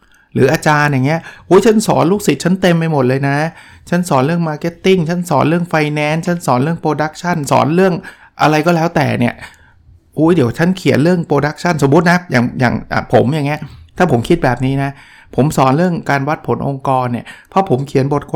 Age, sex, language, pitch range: 60-79, male, Thai, 130-175 Hz